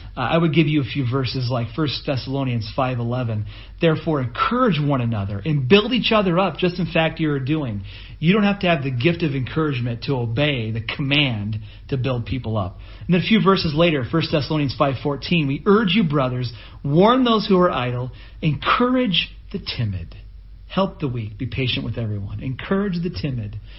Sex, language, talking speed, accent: male, English, 185 wpm, American